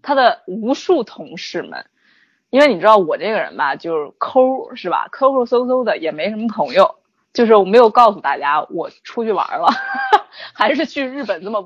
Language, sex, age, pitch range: Chinese, female, 20-39, 200-305 Hz